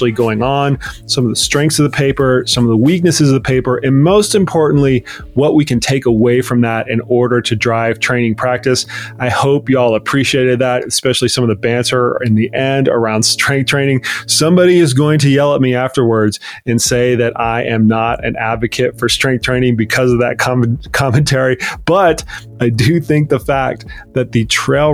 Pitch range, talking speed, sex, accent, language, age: 115-140 Hz, 195 wpm, male, American, English, 30-49